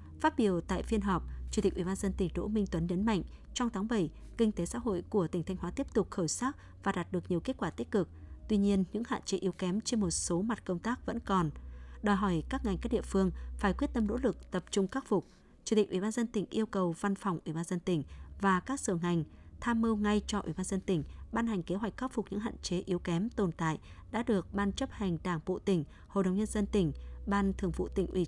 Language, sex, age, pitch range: Vietnamese, female, 20-39, 180-220 Hz